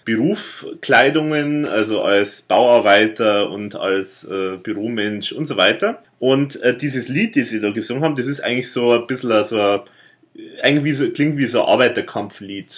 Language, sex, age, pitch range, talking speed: German, male, 30-49, 105-140 Hz, 150 wpm